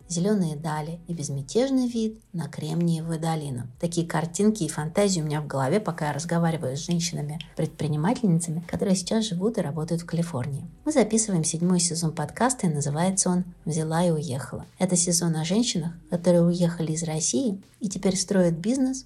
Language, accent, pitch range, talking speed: Russian, native, 155-195 Hz, 160 wpm